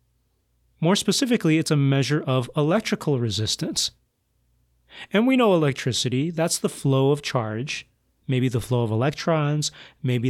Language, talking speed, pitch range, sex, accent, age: English, 135 wpm, 120-160 Hz, male, American, 30-49